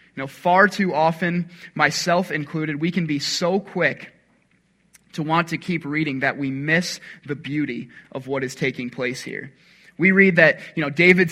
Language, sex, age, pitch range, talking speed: English, male, 20-39, 145-180 Hz, 180 wpm